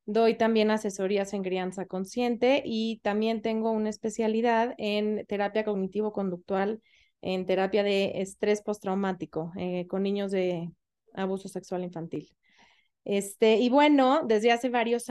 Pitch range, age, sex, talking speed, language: 200-250 Hz, 20-39, female, 125 wpm, Spanish